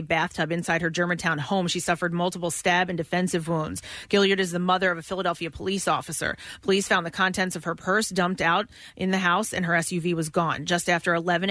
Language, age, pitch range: English, 30-49, 170-190 Hz